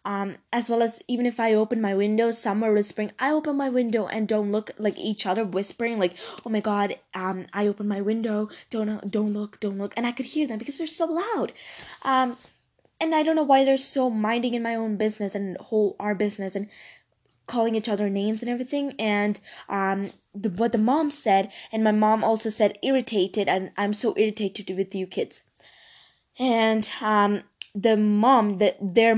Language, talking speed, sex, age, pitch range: English, 195 wpm, female, 10-29, 185-225 Hz